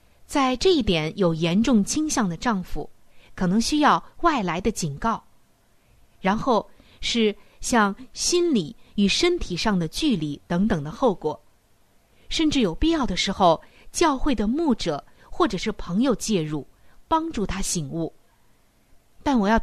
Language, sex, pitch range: Chinese, female, 185-270 Hz